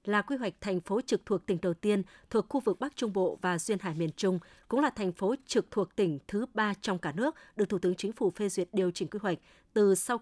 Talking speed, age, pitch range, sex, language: 270 wpm, 20-39, 185-235 Hz, female, Vietnamese